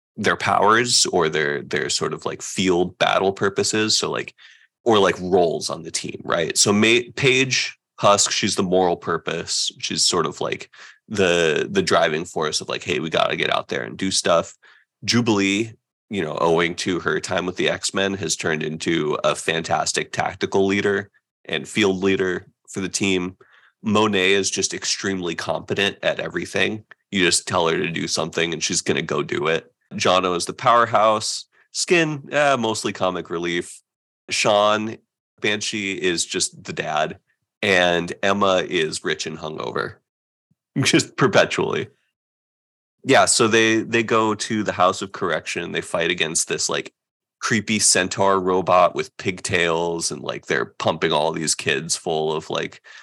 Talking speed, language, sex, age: 165 wpm, English, male, 20-39